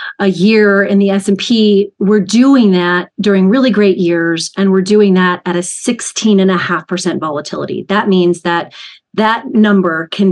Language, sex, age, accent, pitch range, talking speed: English, female, 30-49, American, 175-210 Hz, 185 wpm